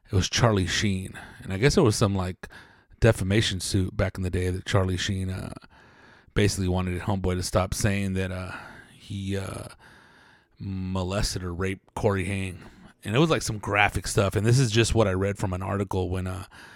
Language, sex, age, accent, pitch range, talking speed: English, male, 30-49, American, 95-110 Hz, 195 wpm